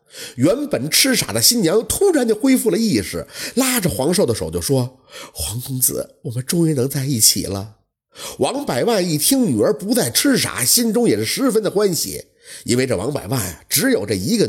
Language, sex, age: Chinese, male, 50-69